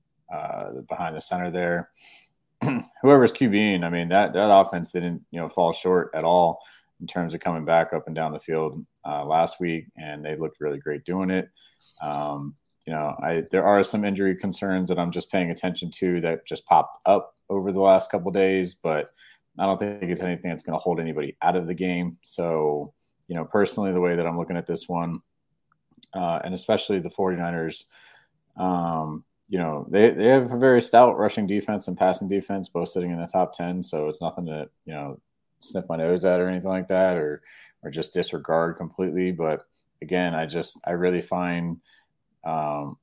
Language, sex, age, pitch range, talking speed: English, male, 30-49, 80-90 Hz, 200 wpm